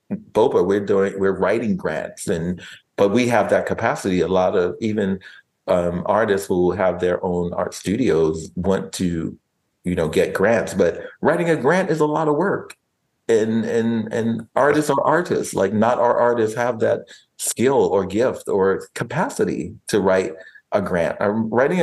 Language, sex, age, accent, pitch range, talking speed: English, male, 30-49, American, 95-140 Hz, 170 wpm